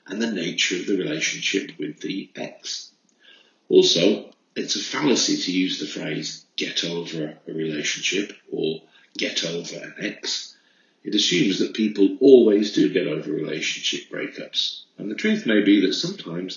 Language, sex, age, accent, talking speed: English, male, 50-69, British, 155 wpm